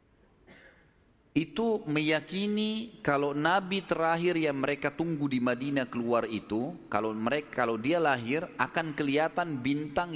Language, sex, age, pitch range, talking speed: Malay, male, 30-49, 130-170 Hz, 120 wpm